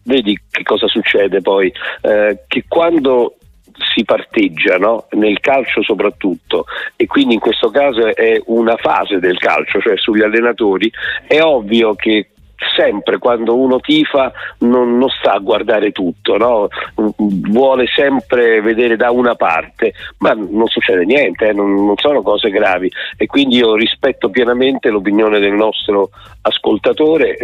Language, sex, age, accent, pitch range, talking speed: Italian, male, 50-69, native, 110-160 Hz, 140 wpm